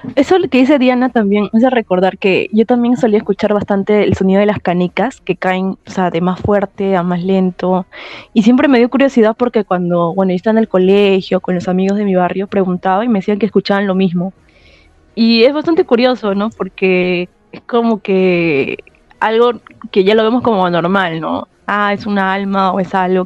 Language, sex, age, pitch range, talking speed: Spanish, female, 20-39, 185-220 Hz, 205 wpm